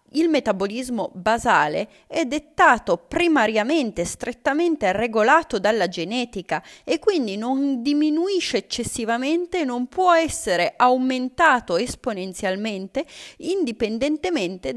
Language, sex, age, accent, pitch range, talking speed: Italian, female, 30-49, native, 210-300 Hz, 90 wpm